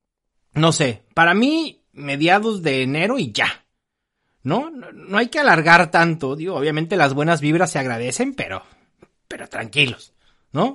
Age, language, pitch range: 30-49, Spanish, 150-210 Hz